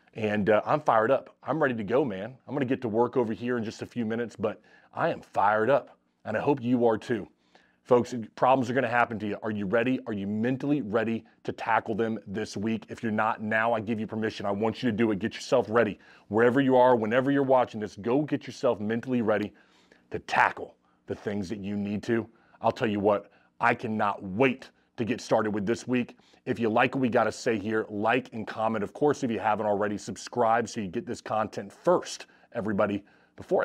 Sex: male